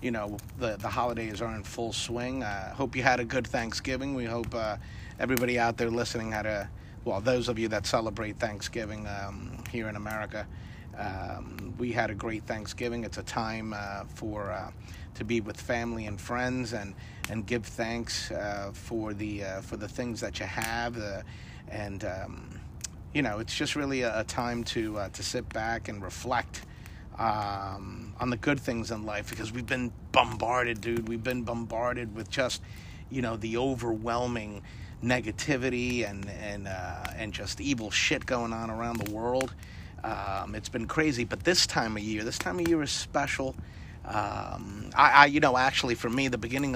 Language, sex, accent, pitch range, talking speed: English, male, American, 100-120 Hz, 185 wpm